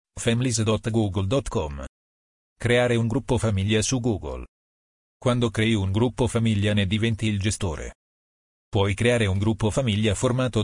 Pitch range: 100-120 Hz